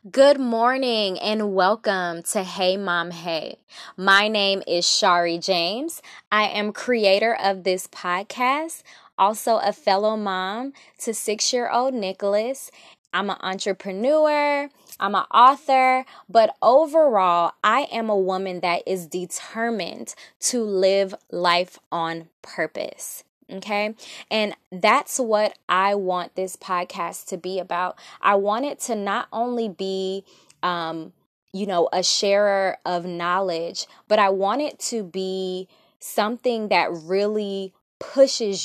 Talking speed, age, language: 125 wpm, 20-39, English